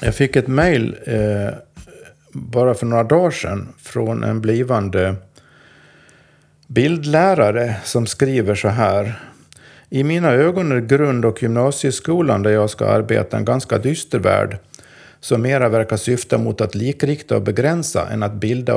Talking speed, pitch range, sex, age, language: 145 wpm, 105-130 Hz, male, 50-69, Swedish